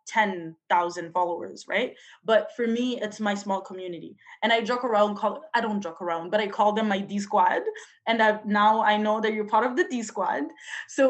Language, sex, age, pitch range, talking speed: English, female, 20-39, 190-230 Hz, 200 wpm